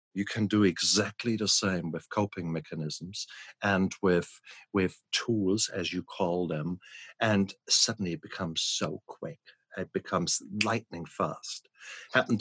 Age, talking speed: 50-69, 135 wpm